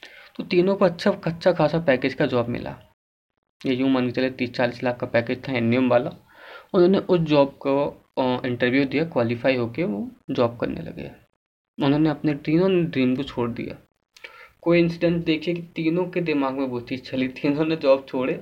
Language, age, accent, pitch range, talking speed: Hindi, 20-39, native, 125-155 Hz, 185 wpm